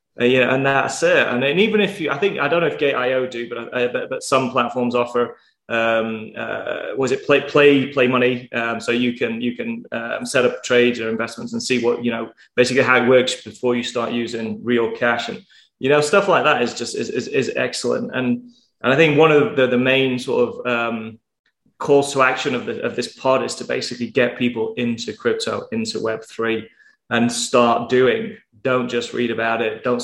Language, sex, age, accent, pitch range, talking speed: English, male, 20-39, British, 115-130 Hz, 225 wpm